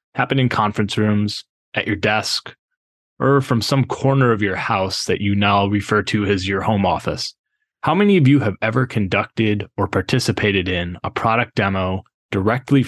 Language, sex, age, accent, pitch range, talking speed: English, male, 20-39, American, 100-130 Hz, 170 wpm